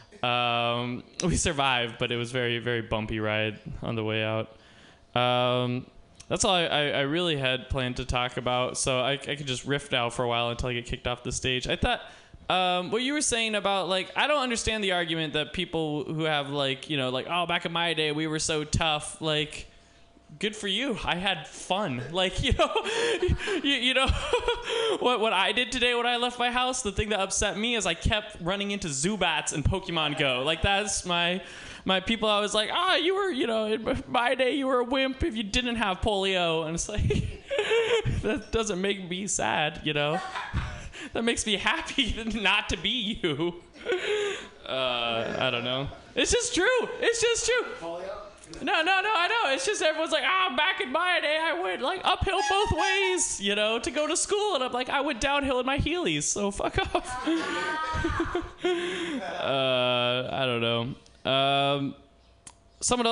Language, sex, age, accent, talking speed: English, male, 20-39, American, 200 wpm